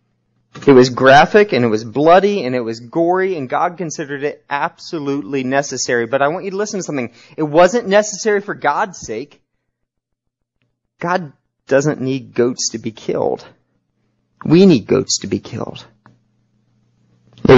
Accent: American